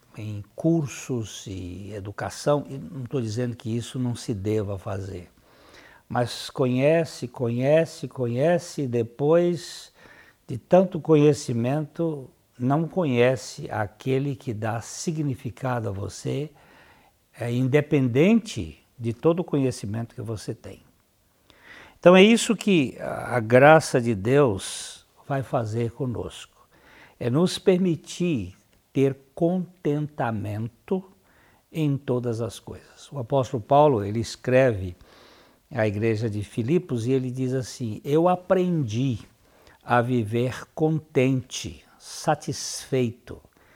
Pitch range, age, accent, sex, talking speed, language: 115-150 Hz, 60-79, Brazilian, male, 105 wpm, Portuguese